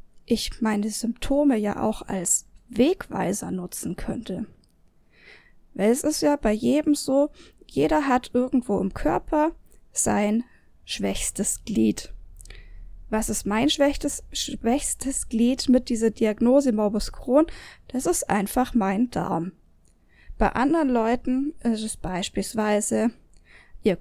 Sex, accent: female, German